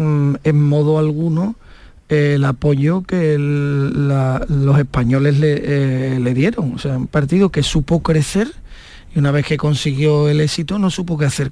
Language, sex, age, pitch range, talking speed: Spanish, male, 40-59, 145-165 Hz, 160 wpm